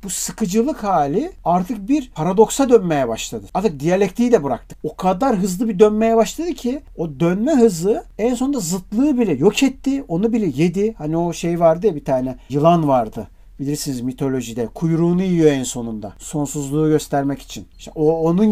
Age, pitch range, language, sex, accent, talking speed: 50-69, 150-210 Hz, Turkish, male, native, 170 wpm